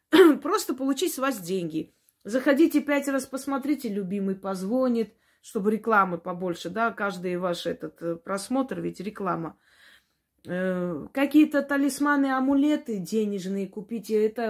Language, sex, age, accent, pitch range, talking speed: Russian, female, 20-39, native, 205-280 Hz, 115 wpm